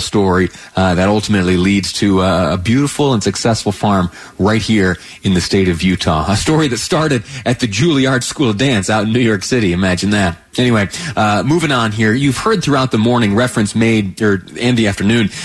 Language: English